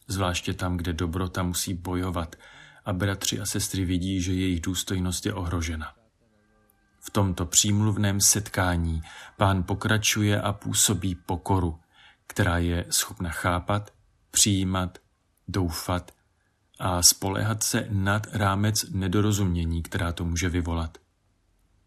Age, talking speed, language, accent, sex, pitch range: 40-59, 115 wpm, Czech, native, male, 90-105 Hz